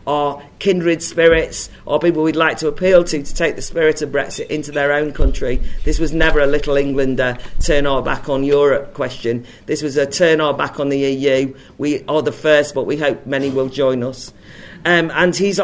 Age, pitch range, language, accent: 50-69, 140-170 Hz, English, British